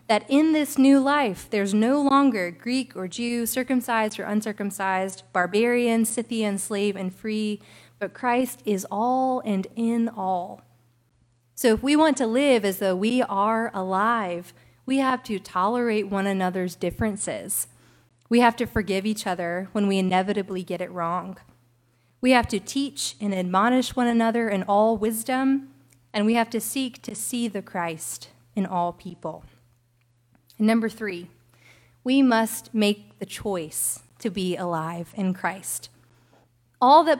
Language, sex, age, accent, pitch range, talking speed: English, female, 30-49, American, 175-235 Hz, 150 wpm